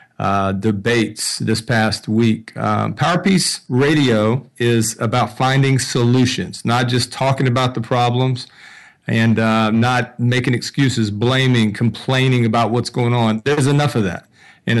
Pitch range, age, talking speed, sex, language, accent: 115-135 Hz, 40-59, 140 wpm, male, English, American